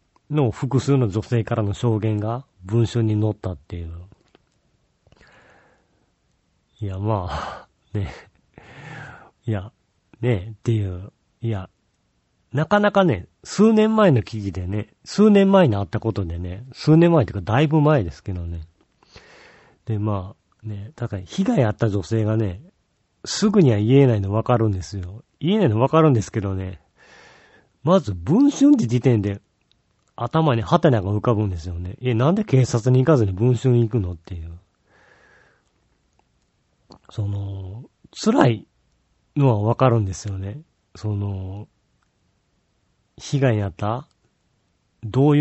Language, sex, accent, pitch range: Japanese, male, native, 100-135 Hz